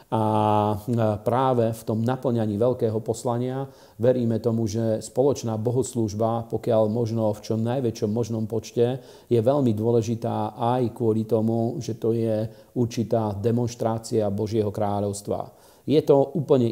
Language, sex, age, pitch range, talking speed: Slovak, male, 40-59, 105-115 Hz, 125 wpm